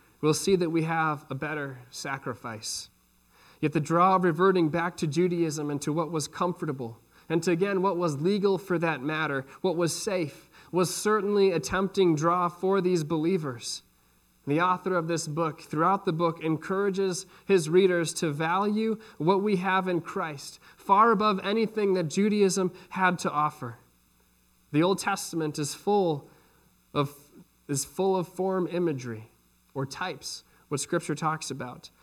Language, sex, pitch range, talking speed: English, male, 155-190 Hz, 160 wpm